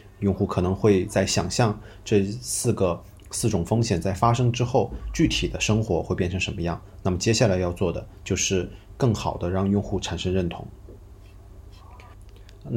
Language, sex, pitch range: Chinese, male, 95-110 Hz